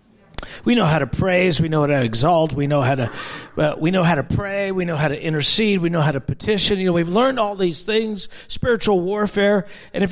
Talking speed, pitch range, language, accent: 235 wpm, 145-190 Hz, English, American